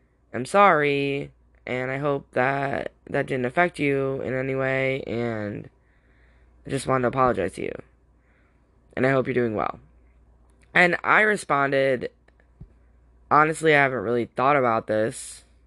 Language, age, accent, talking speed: English, 10-29, American, 140 wpm